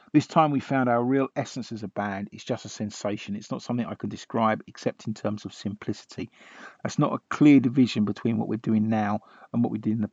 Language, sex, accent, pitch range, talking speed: English, male, British, 105-120 Hz, 245 wpm